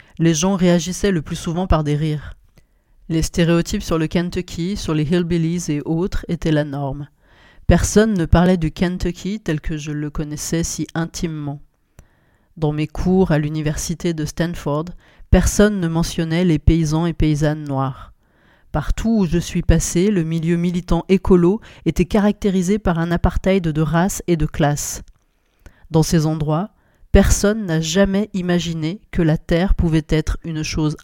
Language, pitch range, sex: French, 155-185 Hz, female